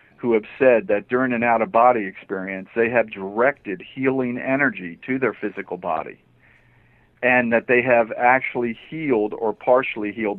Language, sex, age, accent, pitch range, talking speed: English, male, 50-69, American, 105-125 Hz, 150 wpm